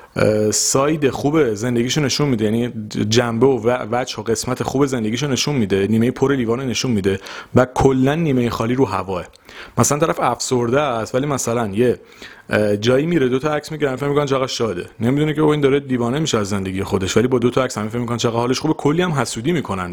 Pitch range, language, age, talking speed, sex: 110-145 Hz, Persian, 30-49, 200 wpm, male